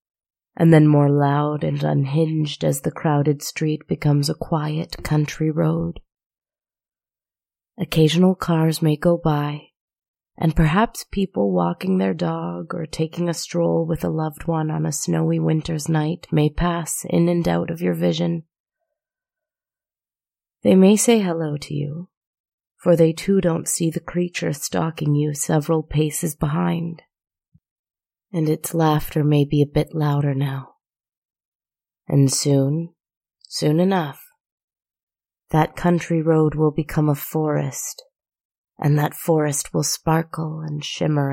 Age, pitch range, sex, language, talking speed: 30-49, 145-170 Hz, female, English, 135 wpm